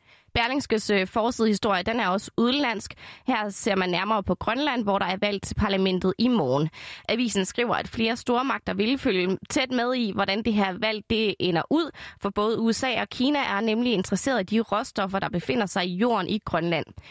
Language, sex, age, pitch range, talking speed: Danish, female, 20-39, 195-245 Hz, 190 wpm